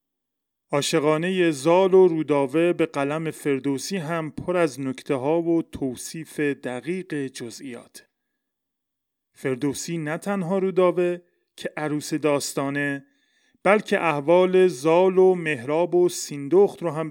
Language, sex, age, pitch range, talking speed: Persian, male, 30-49, 140-180 Hz, 110 wpm